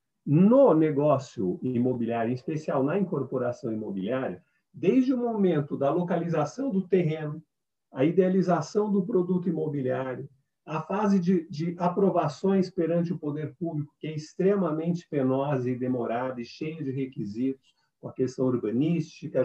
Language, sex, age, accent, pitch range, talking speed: Portuguese, male, 50-69, Brazilian, 135-195 Hz, 135 wpm